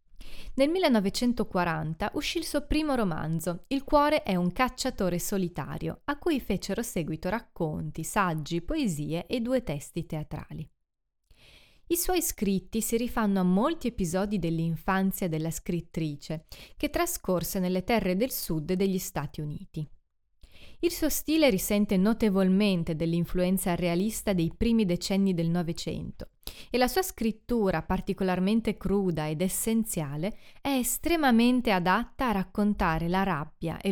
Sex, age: female, 30-49